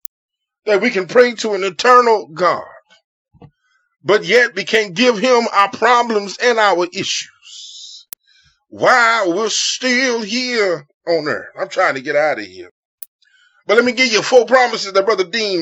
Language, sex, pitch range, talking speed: English, male, 195-275 Hz, 160 wpm